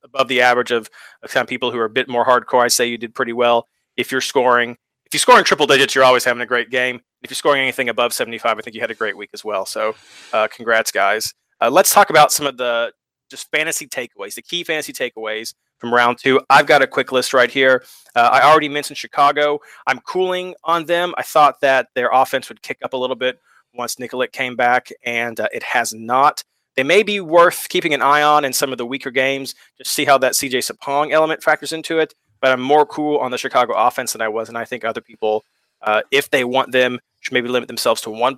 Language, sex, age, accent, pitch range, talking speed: English, male, 30-49, American, 120-145 Hz, 245 wpm